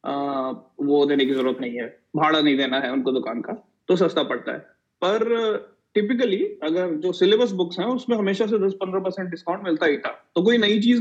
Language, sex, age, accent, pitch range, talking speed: Hindi, male, 30-49, native, 150-210 Hz, 200 wpm